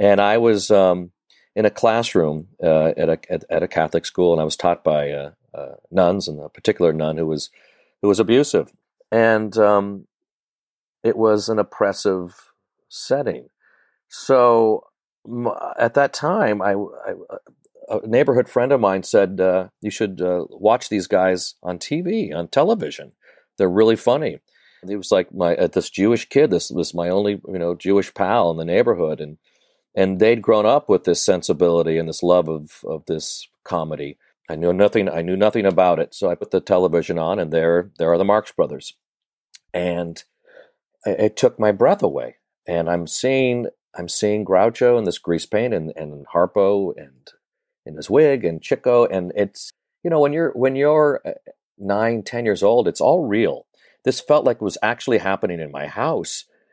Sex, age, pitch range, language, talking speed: male, 40-59, 85-115 Hz, English, 180 wpm